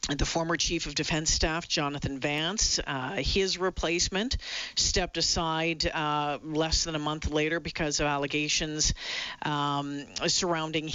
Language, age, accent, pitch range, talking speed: English, 50-69, American, 155-195 Hz, 130 wpm